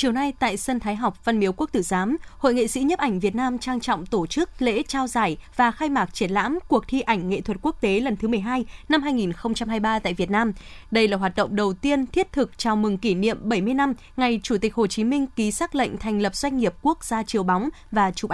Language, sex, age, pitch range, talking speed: Vietnamese, female, 20-39, 200-260 Hz, 255 wpm